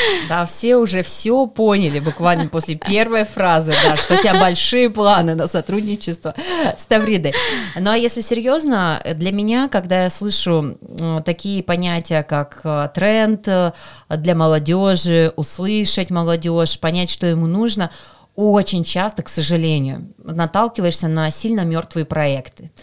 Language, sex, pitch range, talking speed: Russian, female, 165-210 Hz, 130 wpm